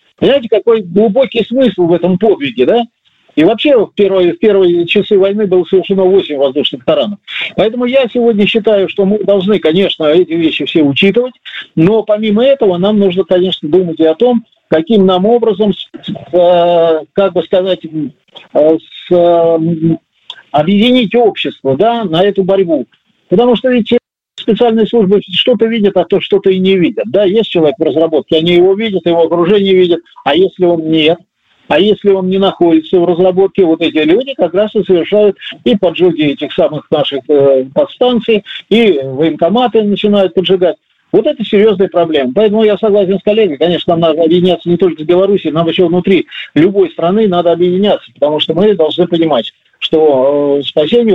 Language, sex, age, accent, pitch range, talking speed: Russian, male, 50-69, native, 165-215 Hz, 160 wpm